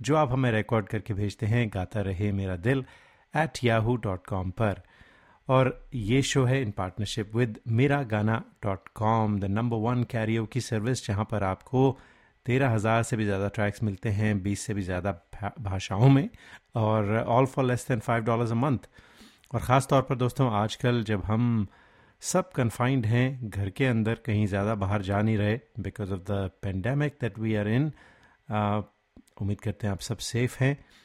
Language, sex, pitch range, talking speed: Hindi, male, 105-125 Hz, 180 wpm